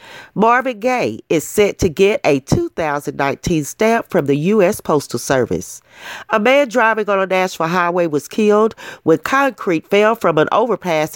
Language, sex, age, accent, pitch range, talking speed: English, female, 40-59, American, 155-215 Hz, 155 wpm